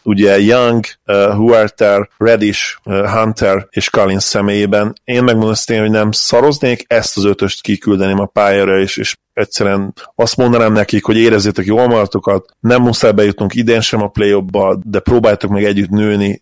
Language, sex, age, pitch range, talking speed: Hungarian, male, 30-49, 95-110 Hz, 165 wpm